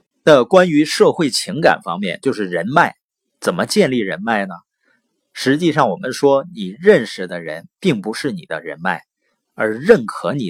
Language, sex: Chinese, male